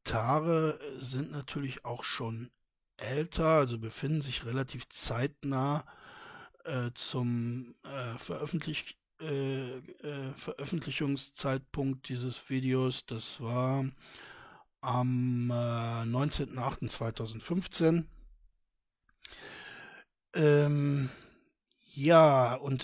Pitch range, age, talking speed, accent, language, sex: 120-145 Hz, 60-79, 75 wpm, German, German, male